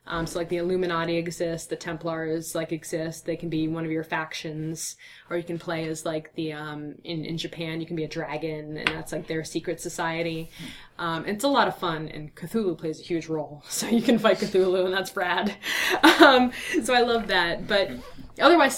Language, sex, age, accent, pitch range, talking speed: English, female, 20-39, American, 155-180 Hz, 210 wpm